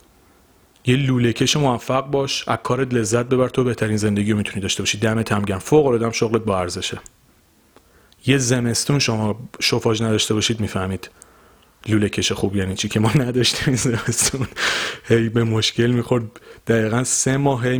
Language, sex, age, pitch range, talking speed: Persian, male, 30-49, 105-125 Hz, 150 wpm